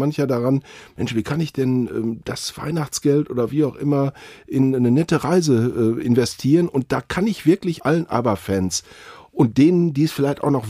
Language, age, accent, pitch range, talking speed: German, 40-59, German, 125-155 Hz, 190 wpm